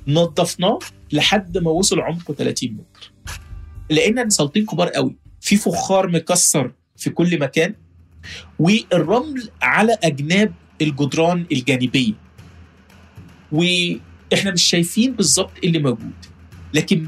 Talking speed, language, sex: 100 wpm, Arabic, male